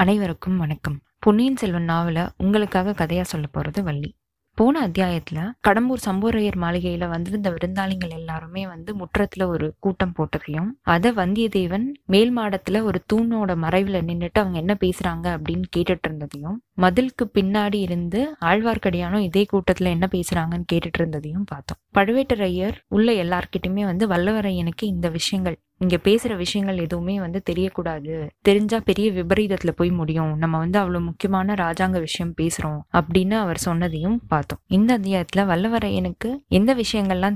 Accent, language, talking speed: native, Tamil, 130 wpm